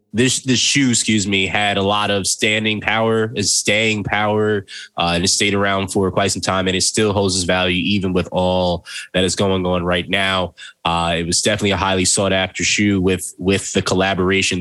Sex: male